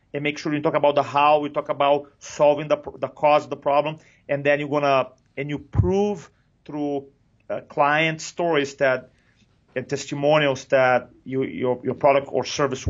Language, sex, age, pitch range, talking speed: English, male, 40-59, 135-155 Hz, 185 wpm